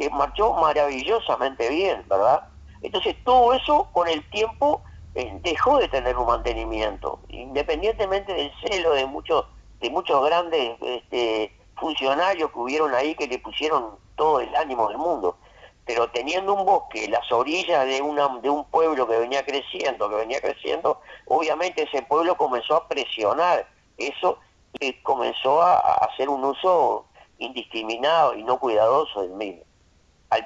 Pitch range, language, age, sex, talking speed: 125-195 Hz, Spanish, 50-69, male, 150 wpm